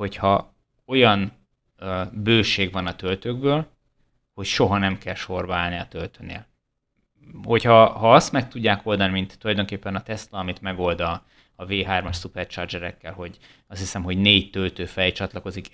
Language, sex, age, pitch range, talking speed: Hungarian, male, 20-39, 95-110 Hz, 145 wpm